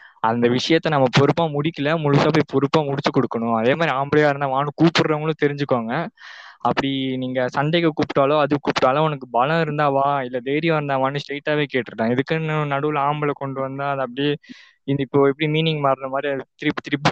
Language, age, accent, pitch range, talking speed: Tamil, 20-39, native, 130-150 Hz, 170 wpm